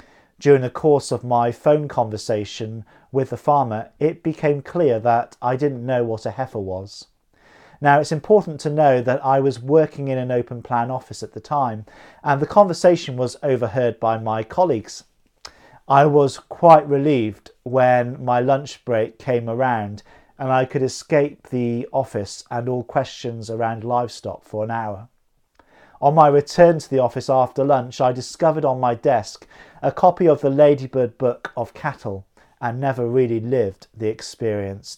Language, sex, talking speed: English, male, 165 wpm